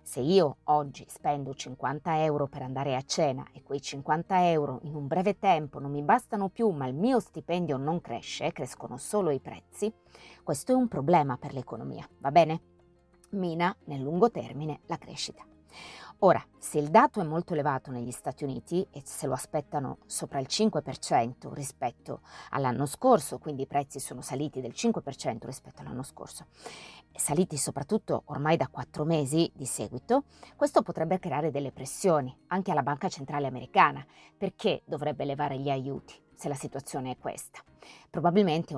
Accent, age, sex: native, 30-49, female